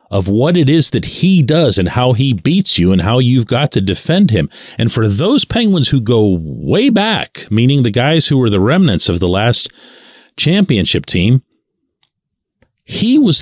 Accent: American